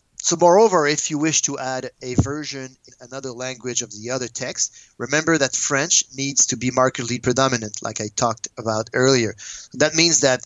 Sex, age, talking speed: male, 30-49, 185 wpm